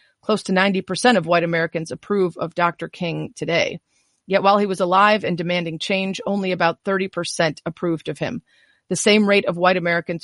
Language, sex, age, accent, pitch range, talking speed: English, female, 30-49, American, 175-205 Hz, 180 wpm